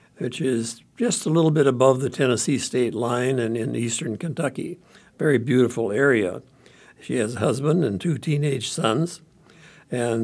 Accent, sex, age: American, male, 60-79